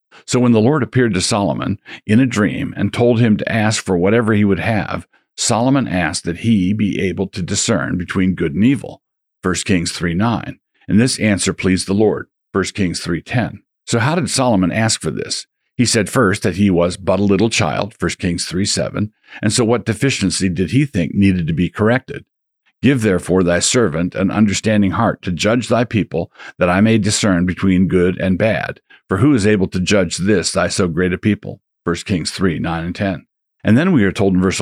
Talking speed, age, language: 205 wpm, 50-69, English